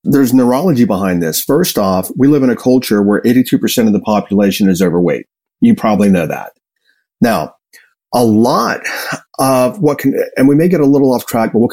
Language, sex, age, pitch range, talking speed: English, male, 40-59, 115-170 Hz, 195 wpm